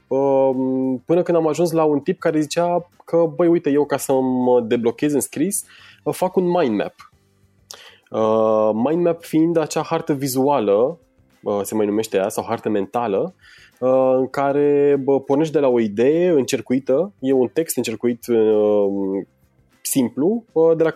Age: 20-39